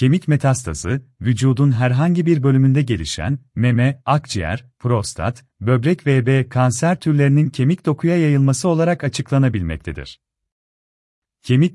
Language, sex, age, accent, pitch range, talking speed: Turkish, male, 40-59, native, 100-145 Hz, 100 wpm